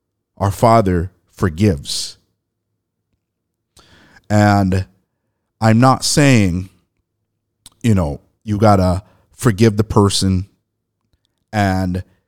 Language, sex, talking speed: English, male, 80 wpm